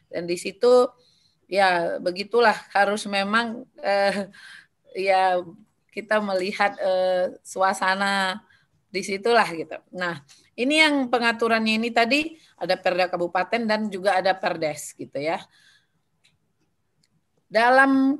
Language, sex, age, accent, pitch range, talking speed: Indonesian, female, 30-49, native, 170-215 Hz, 105 wpm